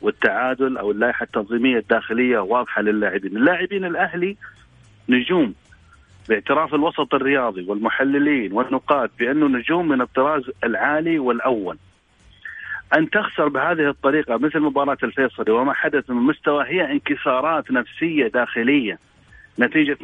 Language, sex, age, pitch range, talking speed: Arabic, male, 40-59, 125-160 Hz, 110 wpm